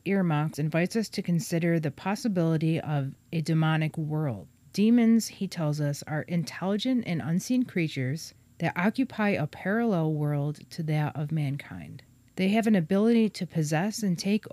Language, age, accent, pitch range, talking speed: English, 40-59, American, 150-195 Hz, 155 wpm